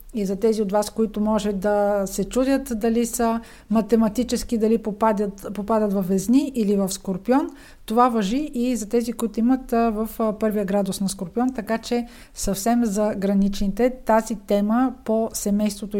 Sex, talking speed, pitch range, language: female, 160 wpm, 215-250 Hz, Bulgarian